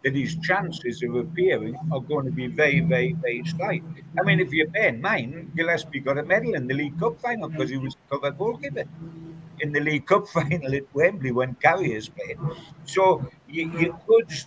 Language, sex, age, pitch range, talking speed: English, male, 60-79, 130-165 Hz, 195 wpm